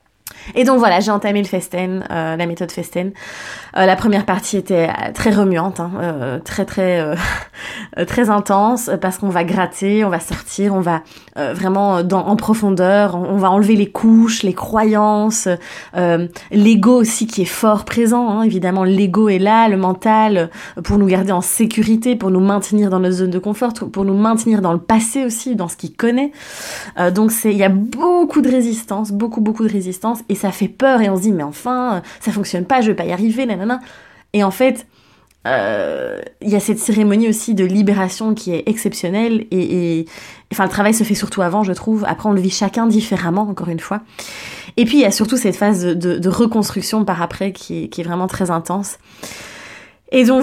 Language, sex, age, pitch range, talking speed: French, female, 20-39, 185-225 Hz, 205 wpm